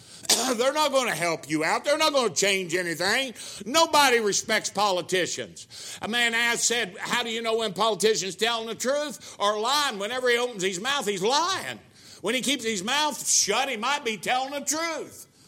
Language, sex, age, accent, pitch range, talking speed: English, male, 60-79, American, 215-290 Hz, 195 wpm